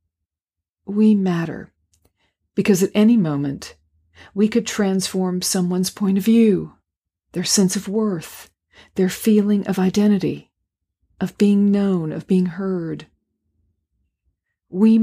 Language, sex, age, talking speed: English, female, 40-59, 110 wpm